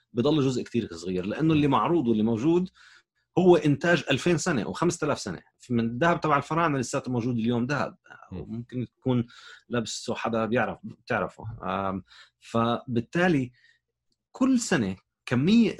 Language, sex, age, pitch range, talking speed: Arabic, male, 30-49, 105-140 Hz, 130 wpm